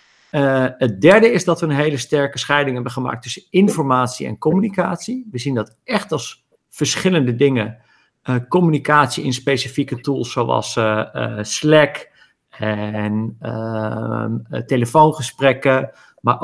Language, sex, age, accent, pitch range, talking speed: Dutch, male, 50-69, Dutch, 120-150 Hz, 135 wpm